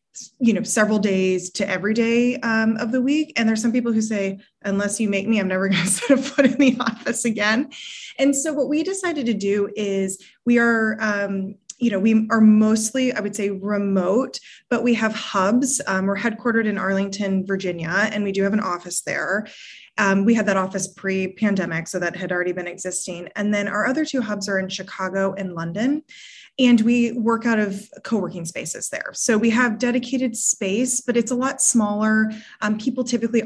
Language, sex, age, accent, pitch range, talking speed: English, female, 20-39, American, 195-240 Hz, 205 wpm